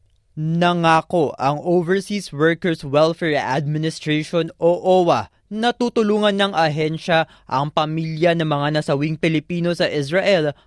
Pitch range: 145-180 Hz